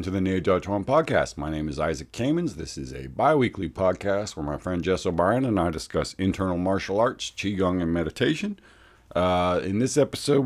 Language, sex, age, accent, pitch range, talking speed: English, male, 50-69, American, 85-105 Hz, 195 wpm